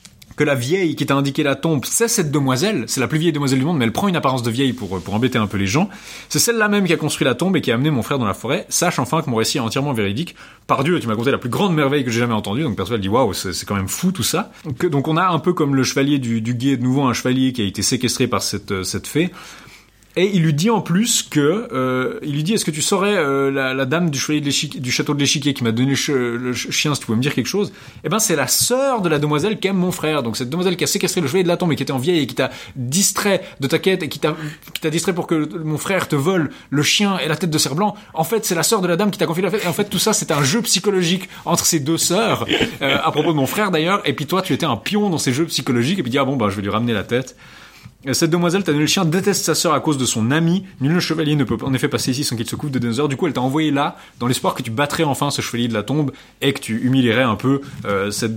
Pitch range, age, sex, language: 125-170 Hz, 30-49, male, French